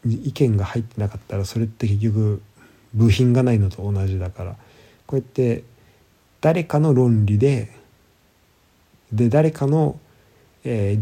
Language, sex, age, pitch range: Japanese, male, 20-39, 95-115 Hz